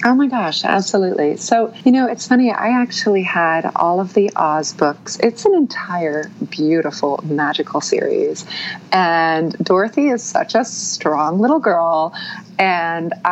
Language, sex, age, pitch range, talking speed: English, female, 30-49, 155-210 Hz, 145 wpm